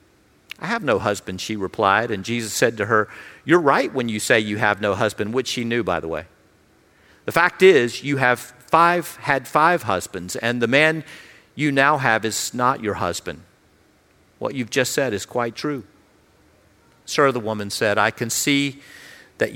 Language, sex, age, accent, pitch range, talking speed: English, male, 50-69, American, 130-215 Hz, 185 wpm